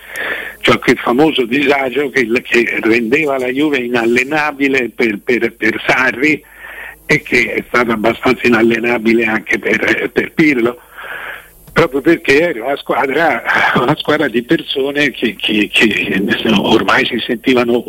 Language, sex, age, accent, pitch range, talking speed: Italian, male, 60-79, native, 120-170 Hz, 130 wpm